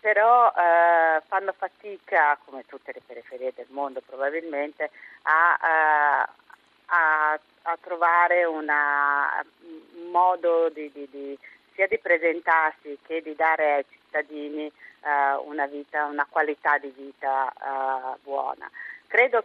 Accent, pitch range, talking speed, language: native, 150-180 Hz, 95 wpm, Italian